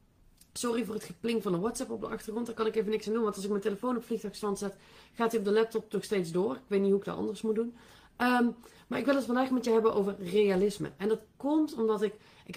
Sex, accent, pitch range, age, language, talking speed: female, Dutch, 195-230 Hz, 30-49, Dutch, 275 wpm